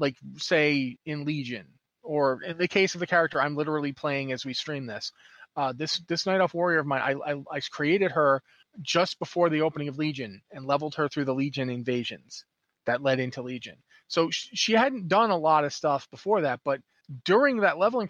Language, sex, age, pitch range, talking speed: English, male, 30-49, 135-175 Hz, 210 wpm